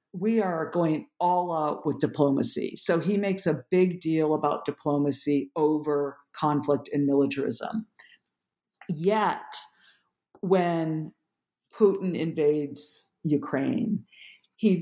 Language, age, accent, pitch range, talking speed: English, 50-69, American, 145-180 Hz, 100 wpm